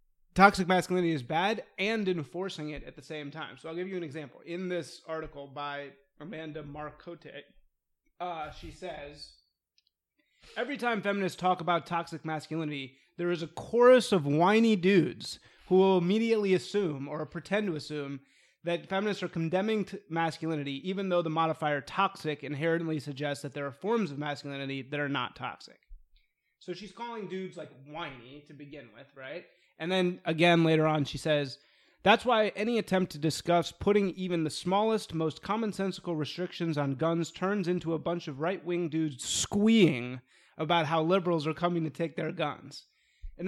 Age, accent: 30-49, American